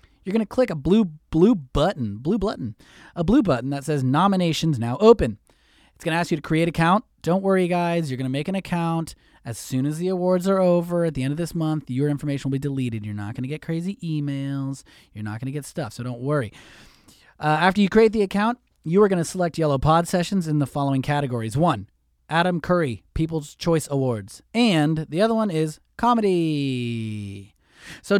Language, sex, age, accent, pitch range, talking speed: English, male, 30-49, American, 130-195 Hz, 200 wpm